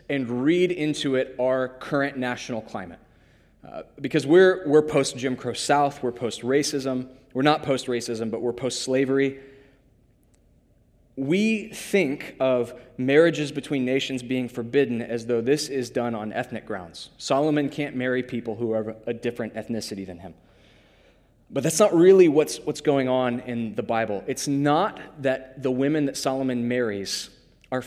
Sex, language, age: male, English, 20-39